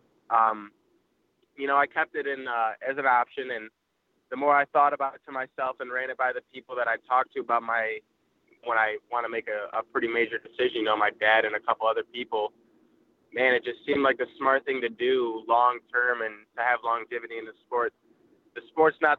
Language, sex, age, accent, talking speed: English, male, 20-39, American, 225 wpm